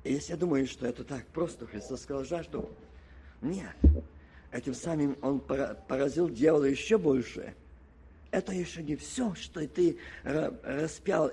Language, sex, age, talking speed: Russian, male, 50-69, 140 wpm